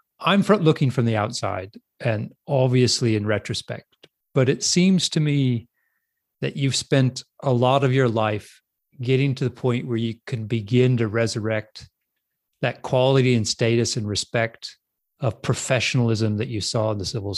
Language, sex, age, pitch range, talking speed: English, male, 30-49, 115-140 Hz, 160 wpm